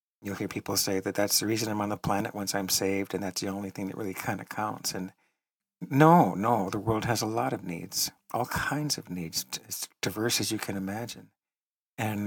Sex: male